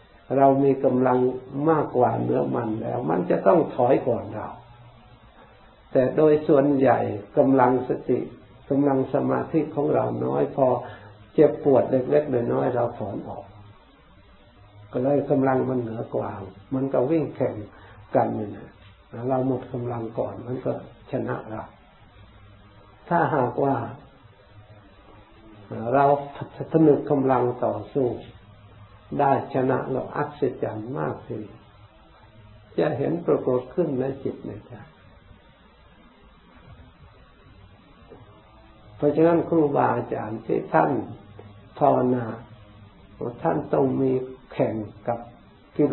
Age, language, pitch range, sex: 60-79, Thai, 105-135 Hz, male